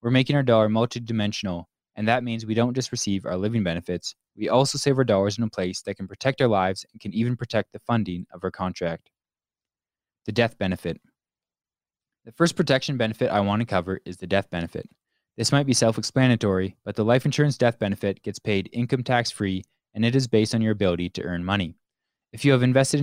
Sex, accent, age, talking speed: male, American, 20-39, 215 wpm